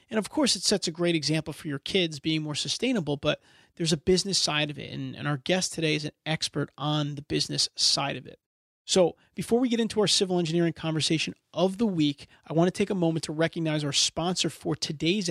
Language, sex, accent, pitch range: English, male, American, 150-190 Hz